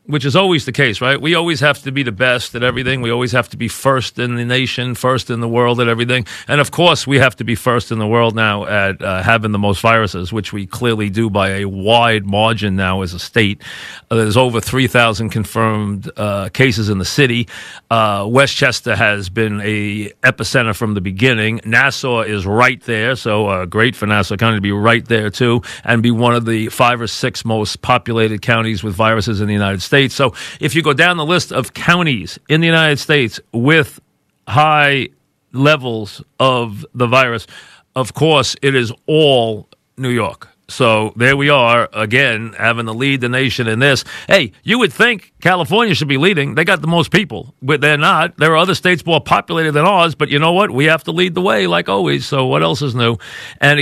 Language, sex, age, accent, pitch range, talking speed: English, male, 40-59, American, 110-140 Hz, 215 wpm